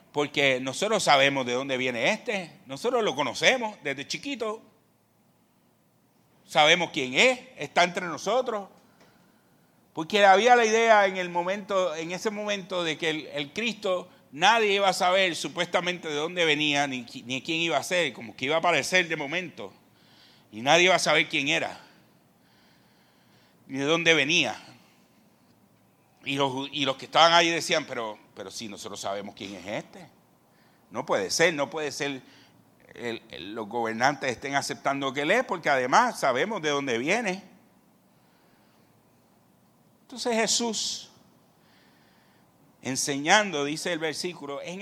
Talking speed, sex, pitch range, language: 145 wpm, male, 140-200 Hz, Spanish